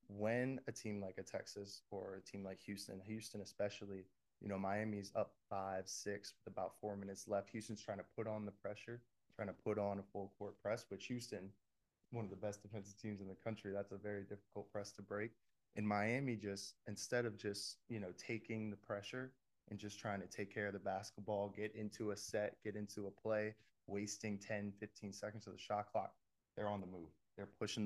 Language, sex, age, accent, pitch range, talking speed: English, male, 20-39, American, 95-105 Hz, 215 wpm